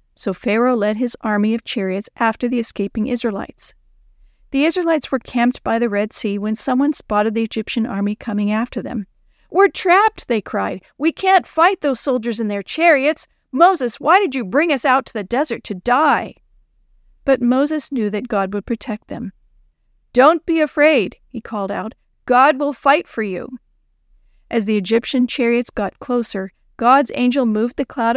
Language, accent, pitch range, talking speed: English, American, 215-260 Hz, 175 wpm